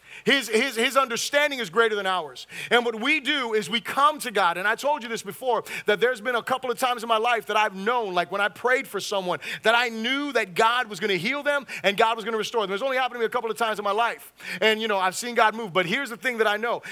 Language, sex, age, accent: English, male, 30-49, American